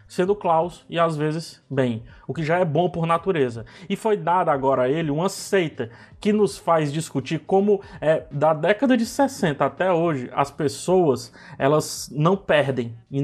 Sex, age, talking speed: male, 20-39, 175 wpm